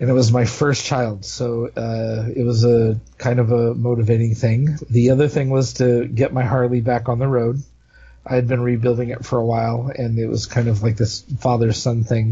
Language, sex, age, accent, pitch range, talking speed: English, male, 40-59, American, 115-135 Hz, 220 wpm